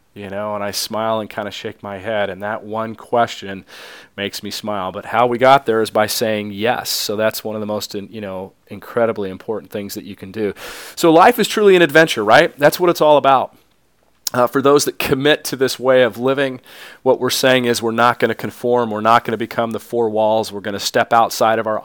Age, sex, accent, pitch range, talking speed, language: 40-59, male, American, 105-125 Hz, 240 wpm, English